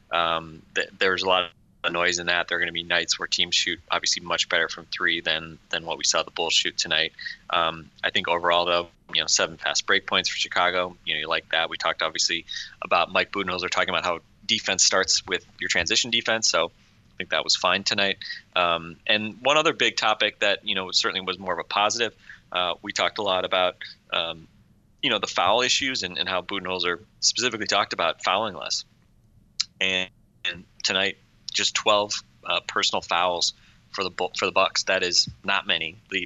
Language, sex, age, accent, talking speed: English, male, 20-39, American, 210 wpm